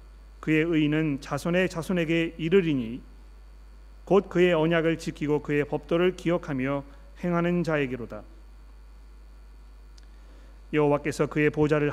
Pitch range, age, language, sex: 120-175 Hz, 40-59, Korean, male